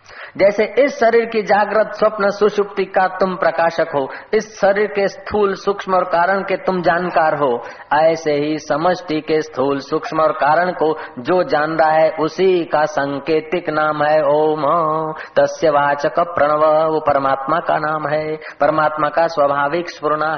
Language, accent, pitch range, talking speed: Hindi, native, 150-210 Hz, 150 wpm